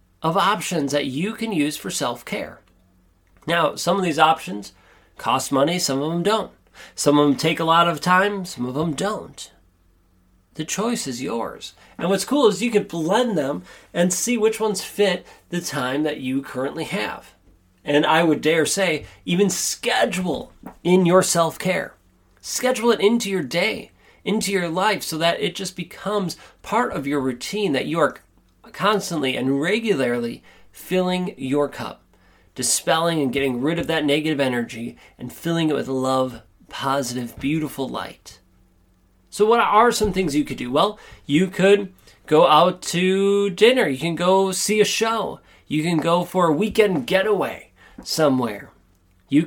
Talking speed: 165 wpm